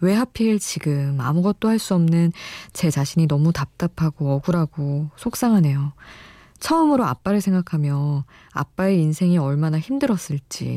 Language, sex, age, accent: Korean, female, 20-39, native